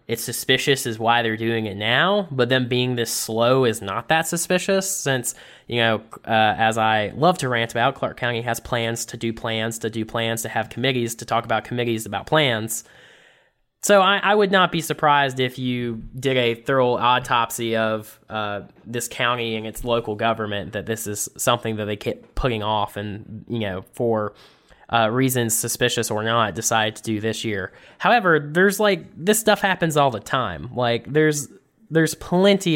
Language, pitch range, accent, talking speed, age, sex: English, 110-140 Hz, American, 190 wpm, 10-29, male